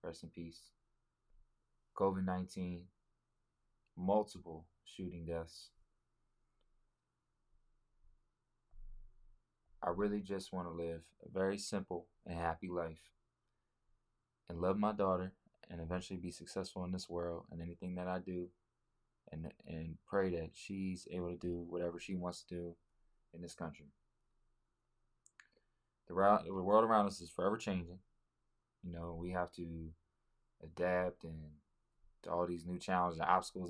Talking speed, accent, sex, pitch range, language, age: 130 wpm, American, male, 85-95 Hz, English, 20-39